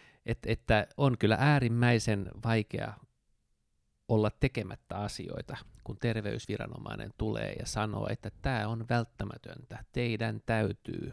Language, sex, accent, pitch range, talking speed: Finnish, male, native, 105-120 Hz, 110 wpm